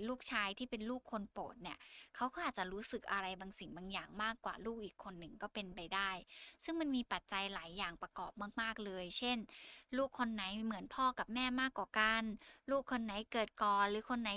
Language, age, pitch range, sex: Thai, 10-29, 195-240 Hz, female